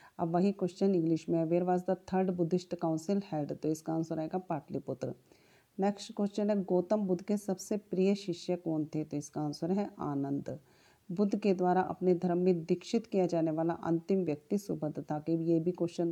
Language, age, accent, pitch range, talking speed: Hindi, 40-59, native, 160-185 Hz, 195 wpm